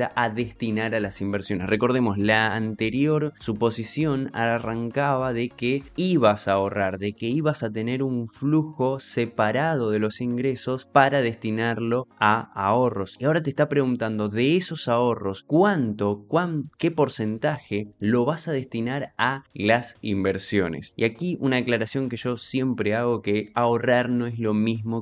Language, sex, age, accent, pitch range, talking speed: Spanish, male, 20-39, Argentinian, 105-130 Hz, 150 wpm